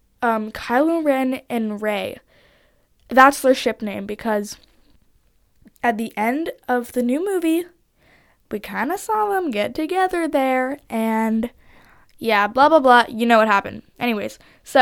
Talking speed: 145 wpm